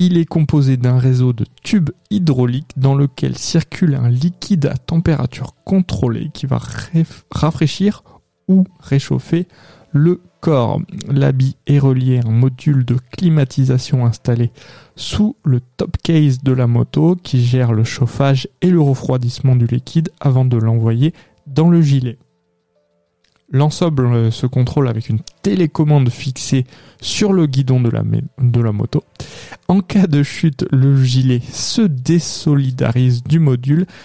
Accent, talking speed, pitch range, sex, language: French, 140 wpm, 125-160 Hz, male, French